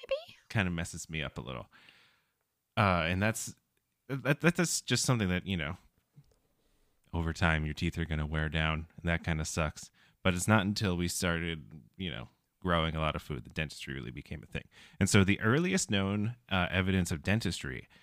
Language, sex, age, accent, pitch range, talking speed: English, male, 20-39, American, 80-105 Hz, 195 wpm